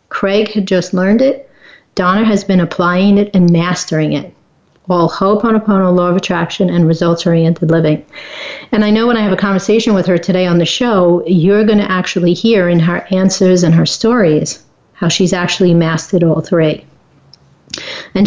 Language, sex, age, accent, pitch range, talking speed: English, female, 40-59, American, 175-215 Hz, 175 wpm